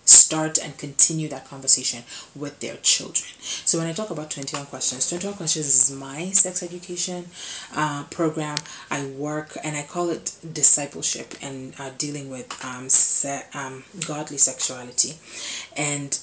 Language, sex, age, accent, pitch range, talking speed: English, female, 30-49, Nigerian, 135-155 Hz, 145 wpm